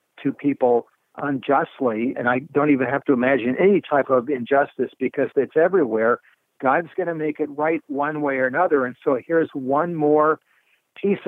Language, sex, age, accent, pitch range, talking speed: English, male, 60-79, American, 135-160 Hz, 175 wpm